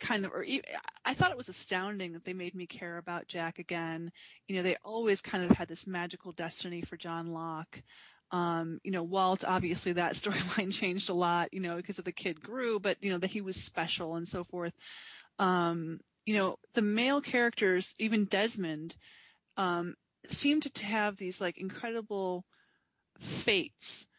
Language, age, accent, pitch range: English, 20-39, American, 175-205 Hz